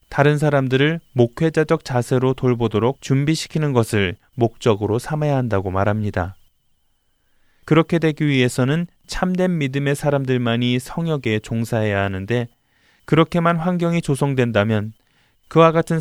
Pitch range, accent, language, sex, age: 115-155 Hz, native, Korean, male, 20-39